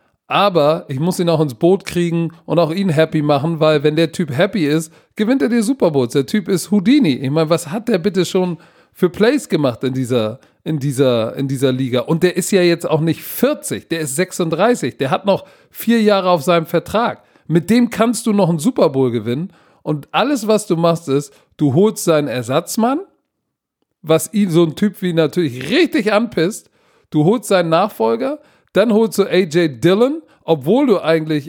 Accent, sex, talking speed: German, male, 200 wpm